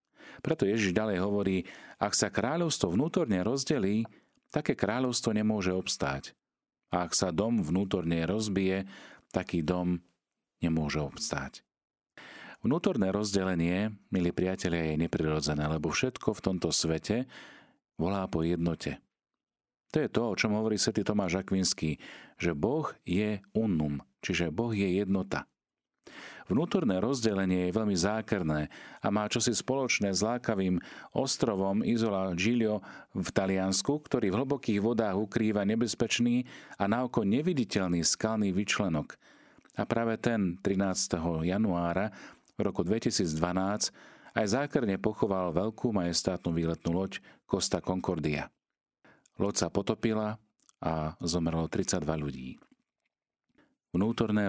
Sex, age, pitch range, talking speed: male, 40-59, 85-110 Hz, 115 wpm